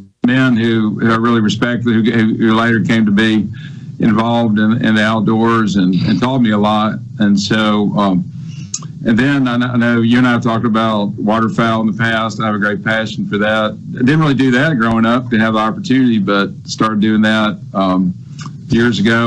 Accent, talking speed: American, 200 wpm